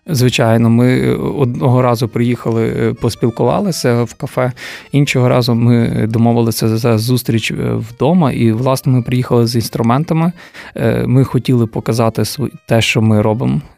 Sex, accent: male, native